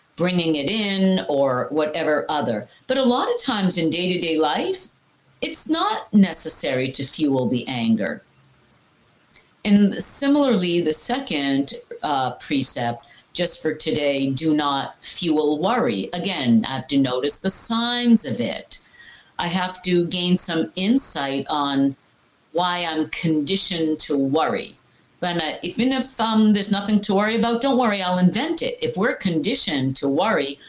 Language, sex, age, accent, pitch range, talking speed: English, female, 50-69, American, 145-210 Hz, 145 wpm